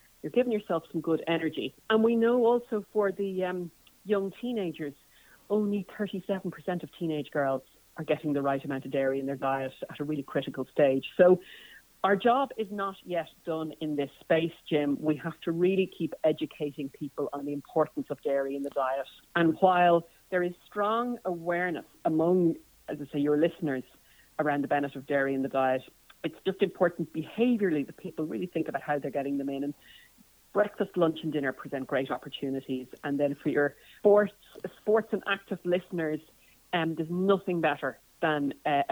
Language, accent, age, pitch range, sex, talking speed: English, Irish, 40-59, 145-185 Hz, female, 180 wpm